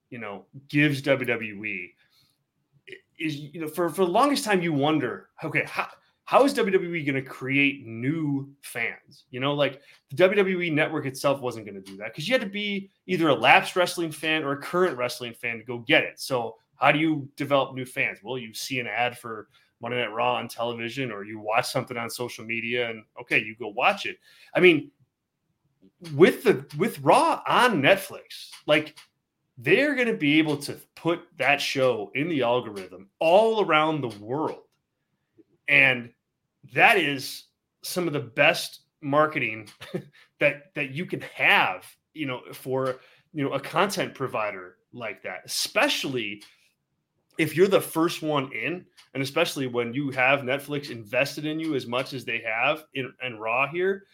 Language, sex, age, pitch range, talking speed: English, male, 30-49, 125-160 Hz, 175 wpm